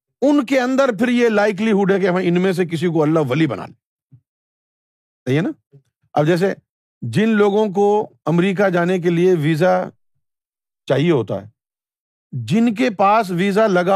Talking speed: 165 wpm